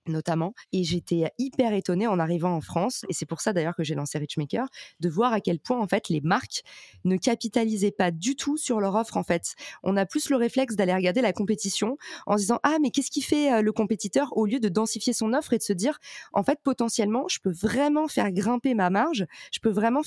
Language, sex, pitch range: French, female, 180-230 Hz